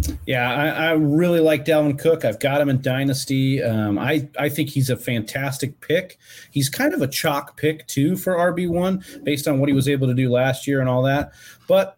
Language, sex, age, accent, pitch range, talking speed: English, male, 30-49, American, 125-160 Hz, 220 wpm